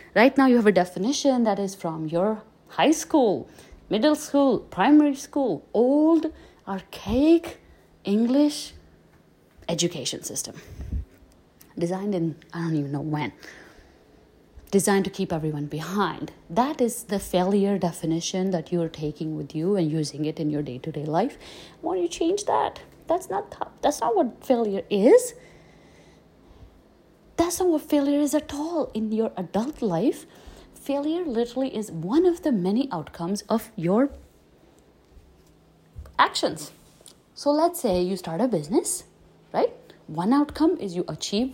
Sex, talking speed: female, 140 wpm